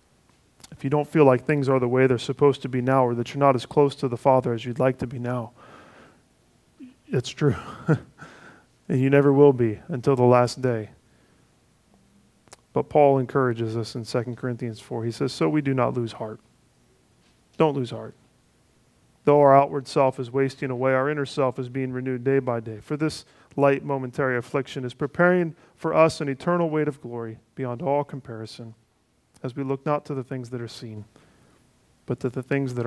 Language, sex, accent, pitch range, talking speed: English, male, American, 120-145 Hz, 195 wpm